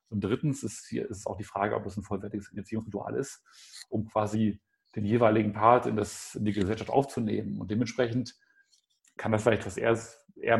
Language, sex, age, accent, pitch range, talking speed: German, male, 40-59, German, 115-145 Hz, 185 wpm